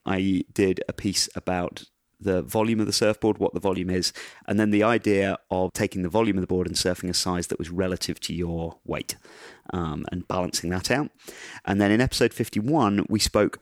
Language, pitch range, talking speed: English, 85-95 Hz, 205 wpm